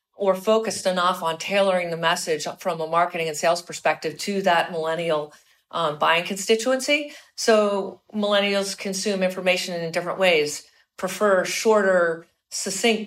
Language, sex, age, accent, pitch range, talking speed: English, female, 50-69, American, 175-205 Hz, 135 wpm